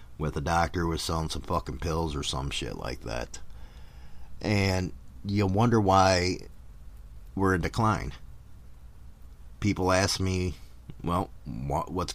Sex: male